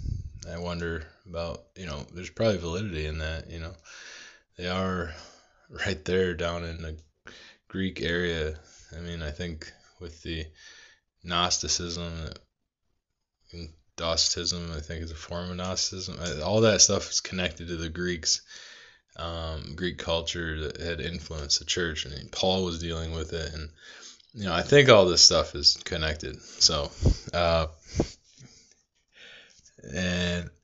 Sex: male